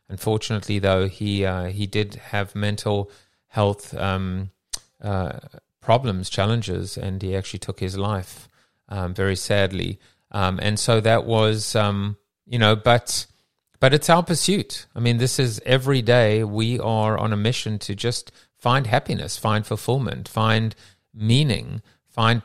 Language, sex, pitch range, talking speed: English, male, 100-120 Hz, 145 wpm